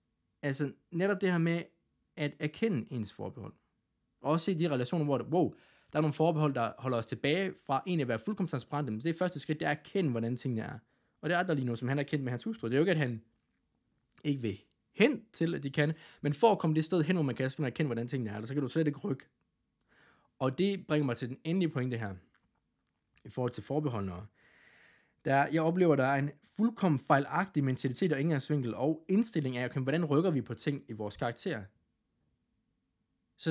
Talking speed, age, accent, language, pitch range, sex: 225 wpm, 20-39, native, Danish, 120-160 Hz, male